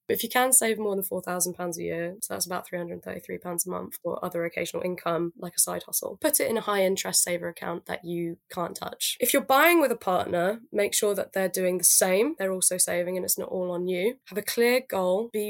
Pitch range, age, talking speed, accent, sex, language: 175-195 Hz, 10-29, 240 wpm, British, female, English